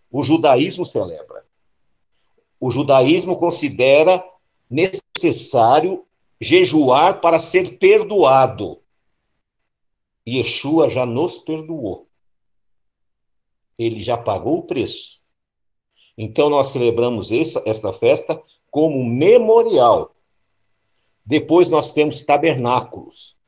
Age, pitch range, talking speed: 60-79, 120-175 Hz, 80 wpm